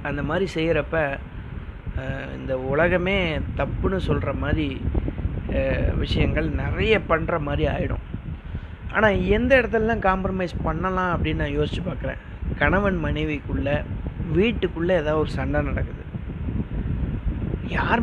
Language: Tamil